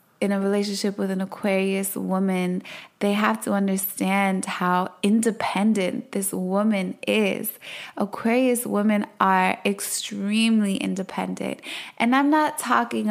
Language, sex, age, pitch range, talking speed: English, female, 20-39, 190-230 Hz, 115 wpm